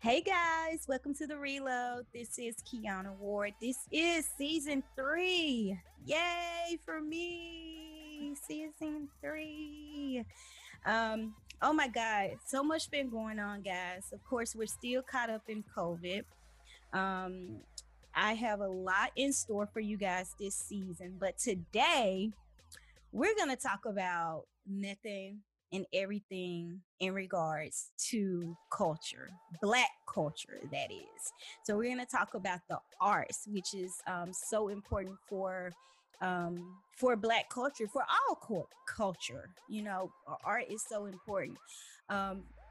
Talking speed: 130 wpm